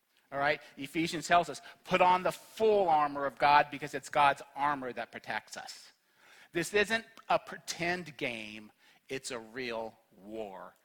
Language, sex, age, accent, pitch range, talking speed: English, male, 40-59, American, 145-200 Hz, 155 wpm